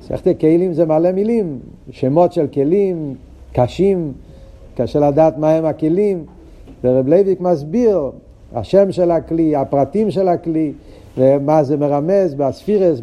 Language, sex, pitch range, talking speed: Hebrew, male, 140-175 Hz, 125 wpm